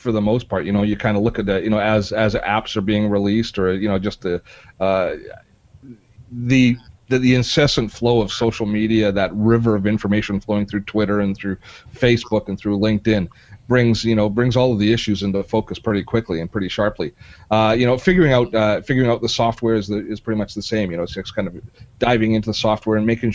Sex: male